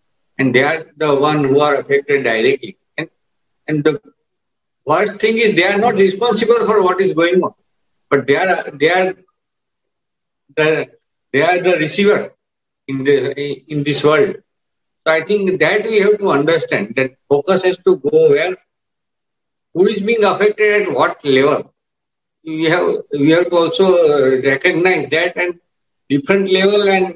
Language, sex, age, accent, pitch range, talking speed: English, male, 50-69, Indian, 140-195 Hz, 160 wpm